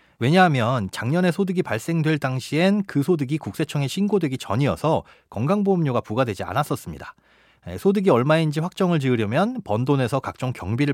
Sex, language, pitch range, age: male, Korean, 115-175 Hz, 30-49